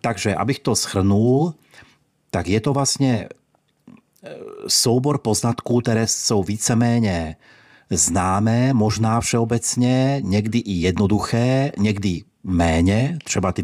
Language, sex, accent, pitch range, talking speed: Czech, male, native, 95-115 Hz, 100 wpm